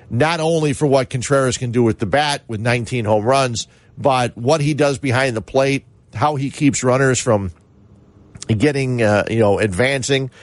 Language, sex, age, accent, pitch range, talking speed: English, male, 50-69, American, 115-145 Hz, 180 wpm